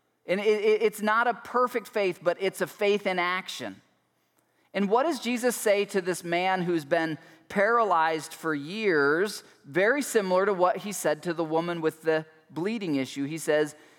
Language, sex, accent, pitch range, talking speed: English, male, American, 155-205 Hz, 170 wpm